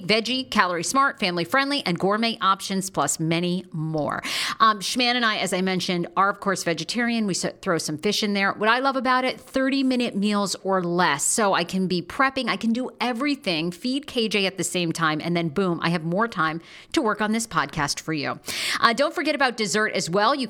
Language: English